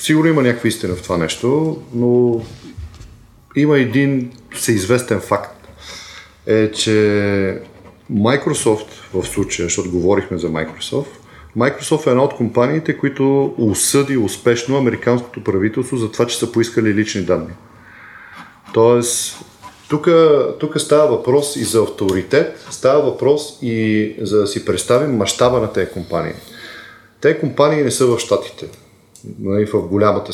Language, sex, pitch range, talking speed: Bulgarian, male, 105-140 Hz, 130 wpm